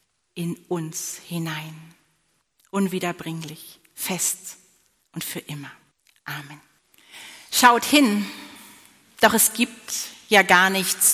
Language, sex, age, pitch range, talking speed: German, female, 40-59, 180-235 Hz, 90 wpm